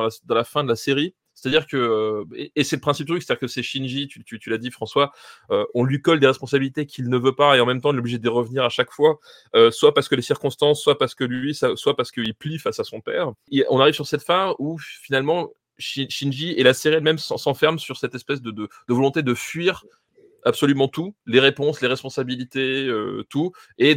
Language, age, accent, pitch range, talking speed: French, 20-39, French, 125-155 Hz, 250 wpm